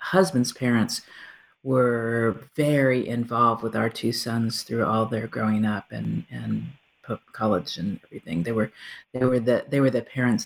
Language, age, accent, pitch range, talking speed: English, 50-69, American, 115-135 Hz, 160 wpm